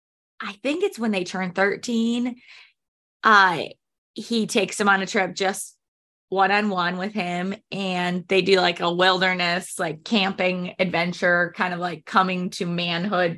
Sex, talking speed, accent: female, 150 wpm, American